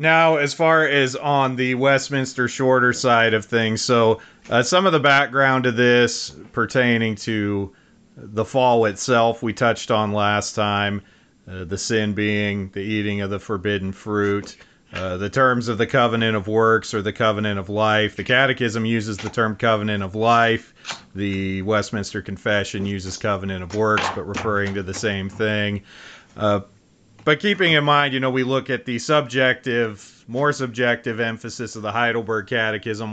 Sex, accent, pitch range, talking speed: male, American, 105-130 Hz, 165 wpm